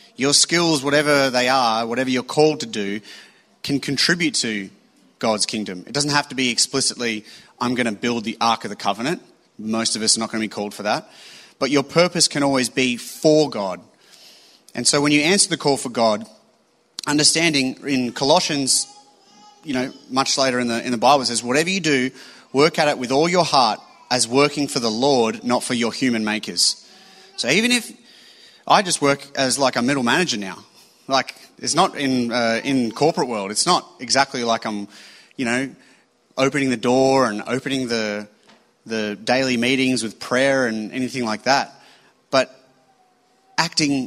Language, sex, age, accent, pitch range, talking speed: English, male, 30-49, Australian, 115-140 Hz, 190 wpm